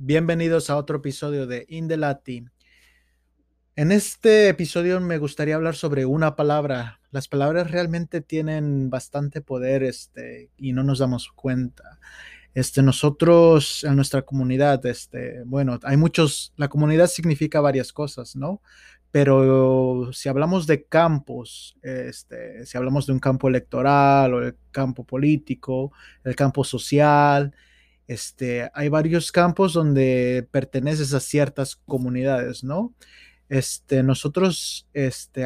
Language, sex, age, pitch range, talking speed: English, male, 20-39, 130-155 Hz, 125 wpm